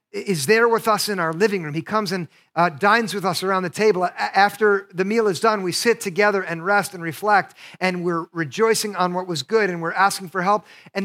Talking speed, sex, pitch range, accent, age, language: 235 wpm, male, 170-210 Hz, American, 50-69, English